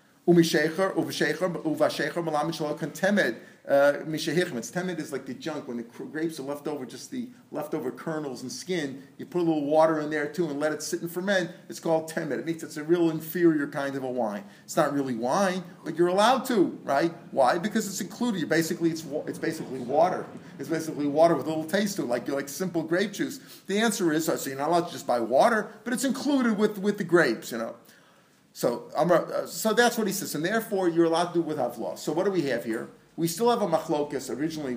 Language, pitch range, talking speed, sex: English, 140-180 Hz, 215 wpm, male